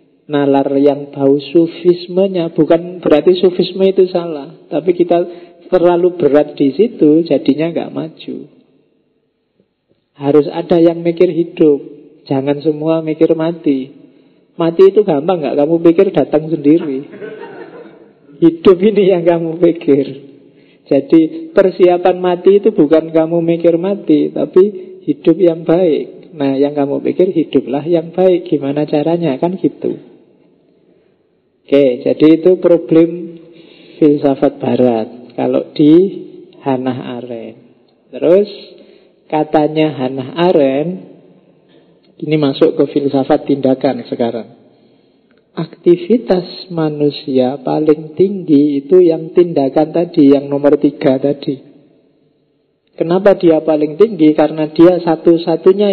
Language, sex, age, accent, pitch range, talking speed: Indonesian, male, 40-59, native, 145-175 Hz, 110 wpm